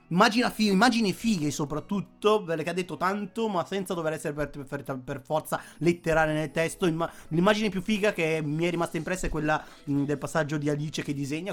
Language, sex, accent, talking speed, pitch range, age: Italian, male, native, 175 wpm, 155-210 Hz, 30-49